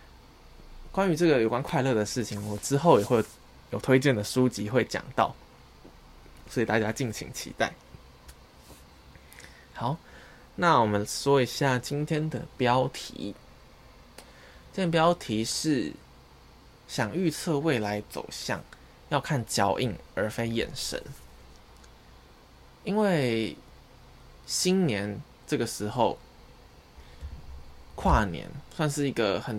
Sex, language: male, Chinese